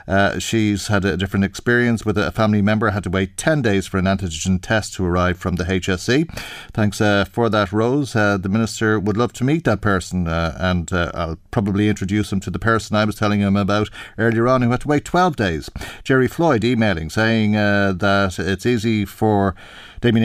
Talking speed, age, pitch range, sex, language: 210 wpm, 40-59, 95-110 Hz, male, English